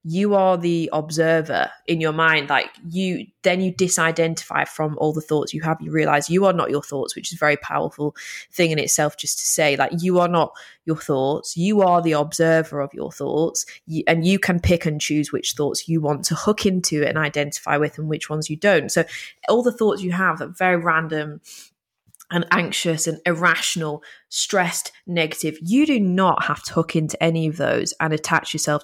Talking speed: 205 wpm